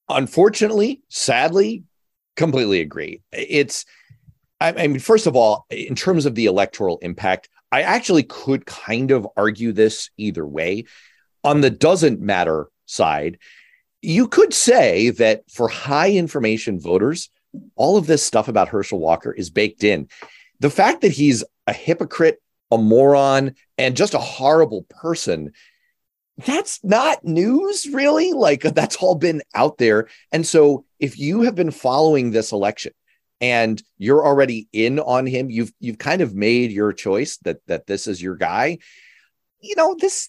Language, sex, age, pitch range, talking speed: English, male, 30-49, 115-185 Hz, 150 wpm